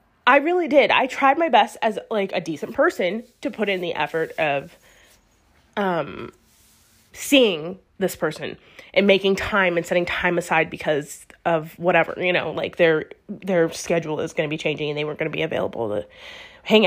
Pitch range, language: 170-225 Hz, English